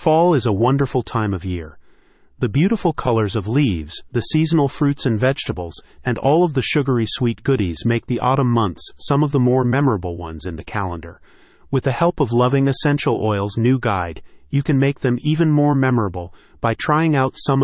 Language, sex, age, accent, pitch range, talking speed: English, male, 40-59, American, 105-140 Hz, 195 wpm